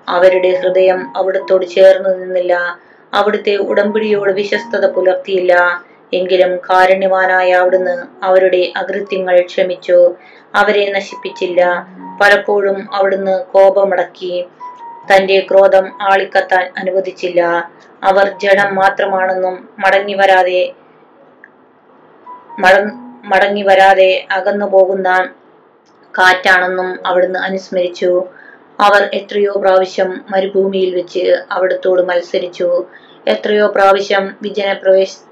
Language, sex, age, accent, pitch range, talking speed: Malayalam, female, 20-39, native, 185-200 Hz, 75 wpm